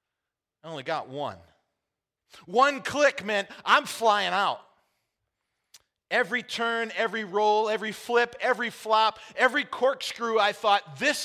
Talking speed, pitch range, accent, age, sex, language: 125 wpm, 160-215 Hz, American, 40-59, male, English